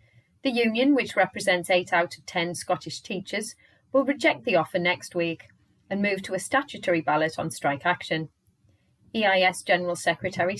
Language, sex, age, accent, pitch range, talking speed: English, female, 30-49, British, 165-225 Hz, 160 wpm